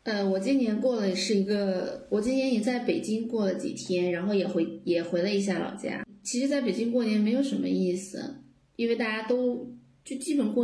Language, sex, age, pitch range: Chinese, female, 20-39, 180-220 Hz